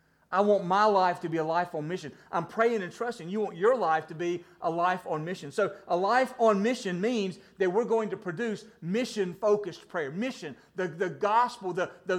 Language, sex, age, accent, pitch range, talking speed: English, male, 40-59, American, 165-235 Hz, 210 wpm